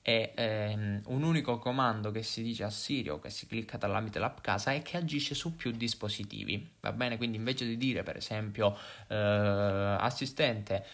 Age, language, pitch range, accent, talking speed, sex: 20-39, Italian, 105-130 Hz, native, 180 wpm, male